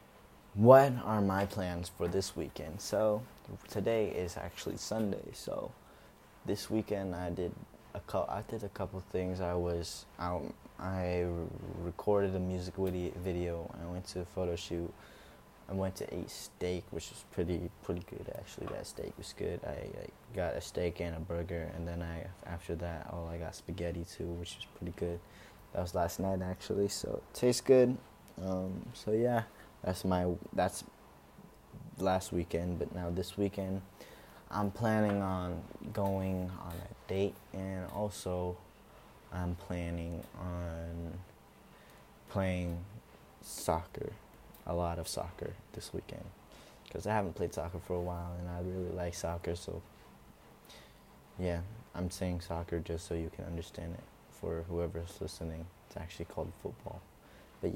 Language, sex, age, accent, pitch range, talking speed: English, male, 20-39, American, 85-95 Hz, 155 wpm